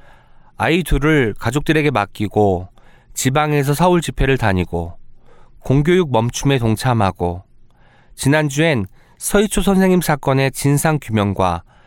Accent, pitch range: native, 105-155 Hz